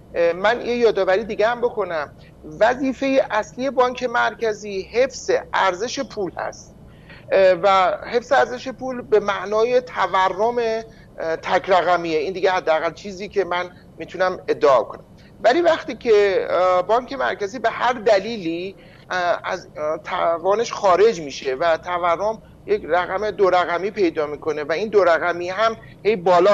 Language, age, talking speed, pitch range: Persian, 50-69, 130 wpm, 175-245 Hz